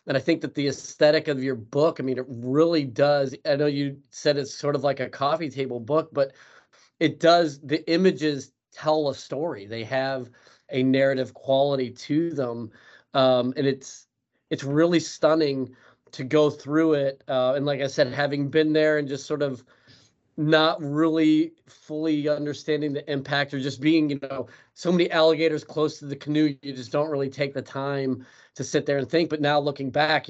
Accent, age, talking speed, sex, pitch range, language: American, 30-49, 190 wpm, male, 130-155 Hz, English